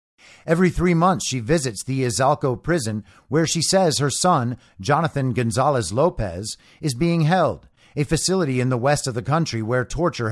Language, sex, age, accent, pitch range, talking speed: English, male, 50-69, American, 115-150 Hz, 170 wpm